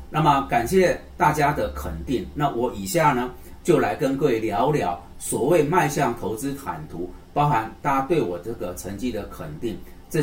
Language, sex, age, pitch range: Chinese, male, 40-59, 90-130 Hz